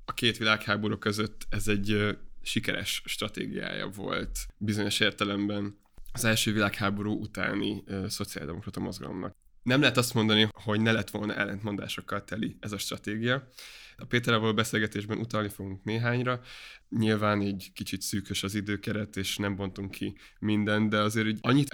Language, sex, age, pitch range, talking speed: Hungarian, male, 20-39, 100-115 Hz, 150 wpm